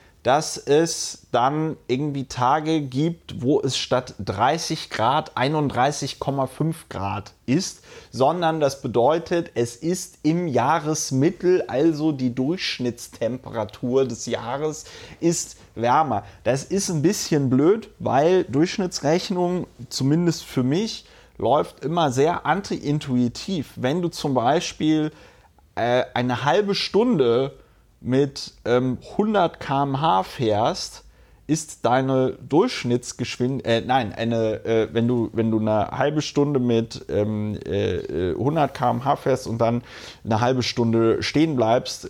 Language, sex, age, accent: German, male, 30-49, German